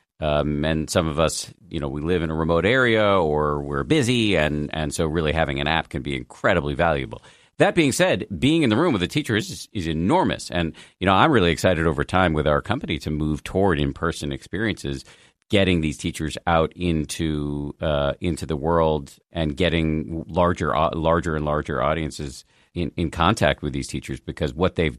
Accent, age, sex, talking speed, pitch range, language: American, 40-59, male, 195 wpm, 75-100 Hz, English